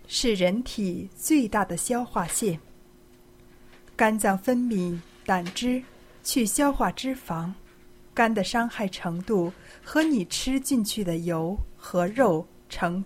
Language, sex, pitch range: Chinese, female, 170-235 Hz